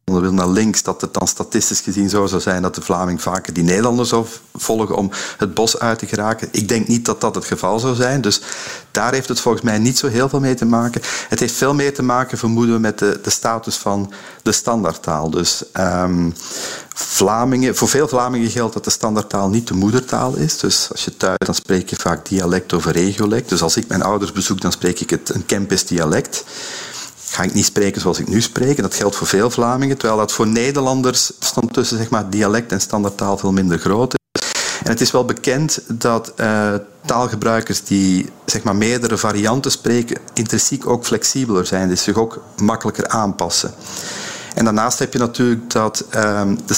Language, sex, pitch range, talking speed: Dutch, male, 100-120 Hz, 205 wpm